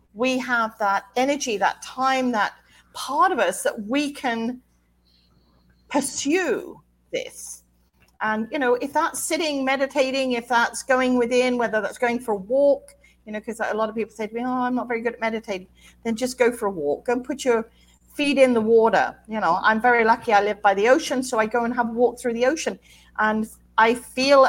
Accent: British